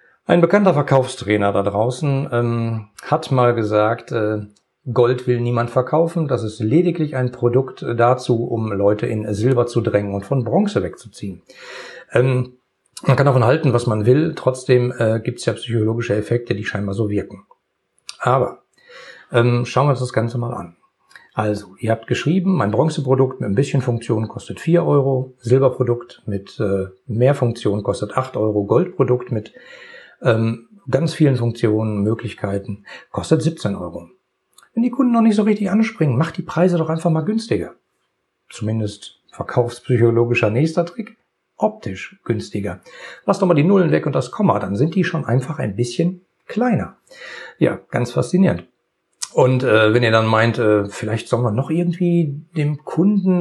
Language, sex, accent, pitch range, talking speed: German, male, German, 115-160 Hz, 160 wpm